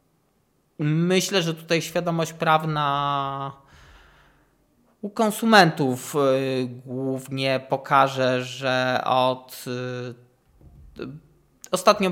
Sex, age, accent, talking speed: male, 20-39, native, 60 wpm